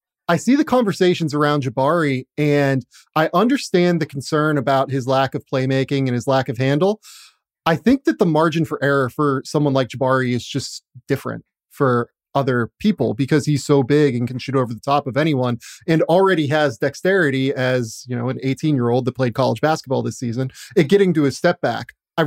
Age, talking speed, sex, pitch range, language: 30-49, 195 wpm, male, 130-160 Hz, English